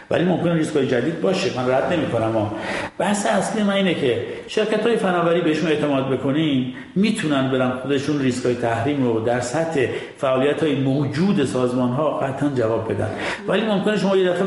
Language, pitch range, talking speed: Persian, 125-170 Hz, 165 wpm